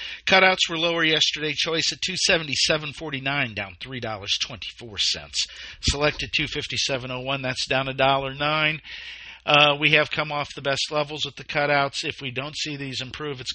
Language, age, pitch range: English, 50-69, 125-155 Hz